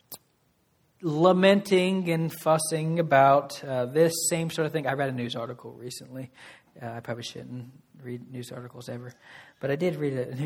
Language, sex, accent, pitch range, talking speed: English, male, American, 125-150 Hz, 165 wpm